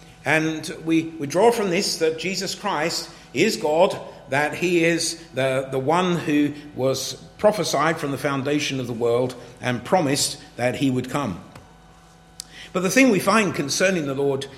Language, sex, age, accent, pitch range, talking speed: English, male, 50-69, British, 125-165 Hz, 165 wpm